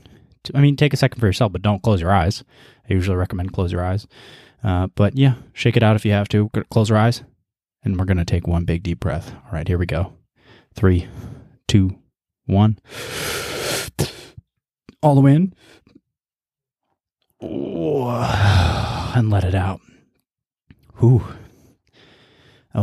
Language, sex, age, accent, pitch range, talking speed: English, male, 20-39, American, 100-120 Hz, 150 wpm